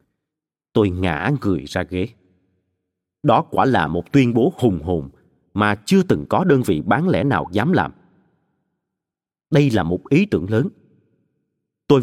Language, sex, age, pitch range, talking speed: Vietnamese, male, 30-49, 100-145 Hz, 155 wpm